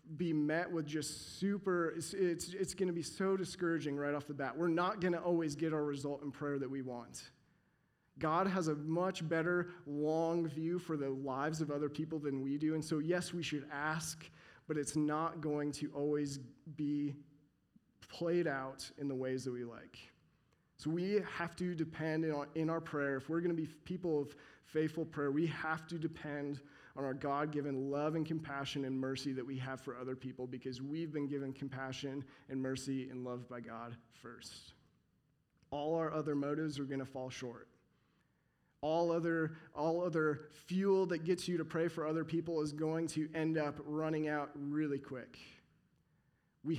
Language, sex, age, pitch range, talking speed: English, male, 30-49, 140-165 Hz, 185 wpm